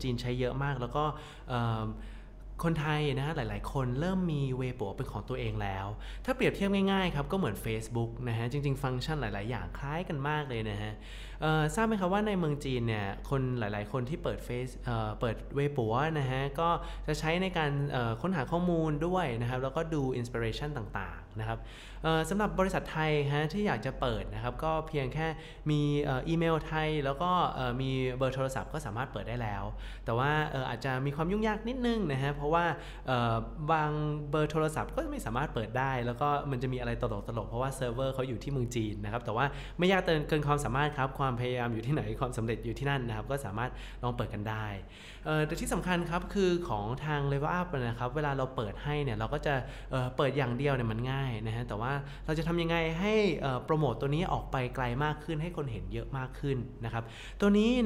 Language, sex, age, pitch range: Thai, male, 20-39, 120-155 Hz